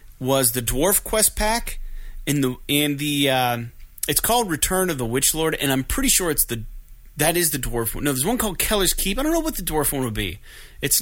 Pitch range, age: 130-185 Hz, 30-49